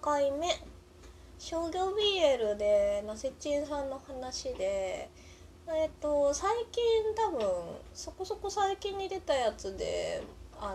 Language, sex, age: Japanese, female, 20-39